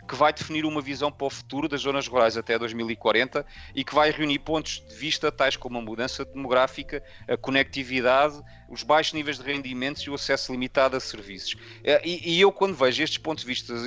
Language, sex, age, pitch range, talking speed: Portuguese, male, 30-49, 120-145 Hz, 205 wpm